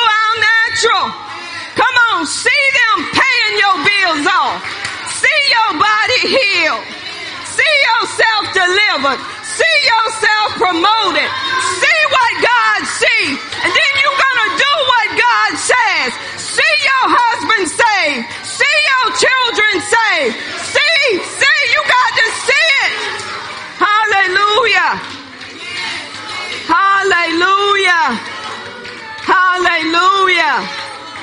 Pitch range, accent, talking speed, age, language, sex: 340-450 Hz, American, 95 wpm, 40-59, English, female